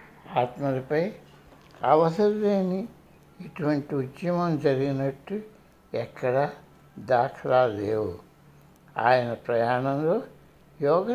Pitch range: 130-180 Hz